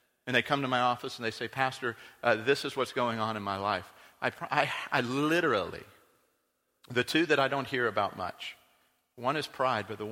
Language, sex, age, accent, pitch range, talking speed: English, male, 50-69, American, 105-145 Hz, 215 wpm